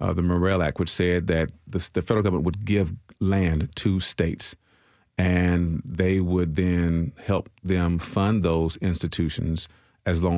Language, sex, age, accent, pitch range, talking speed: English, male, 40-59, American, 85-100 Hz, 155 wpm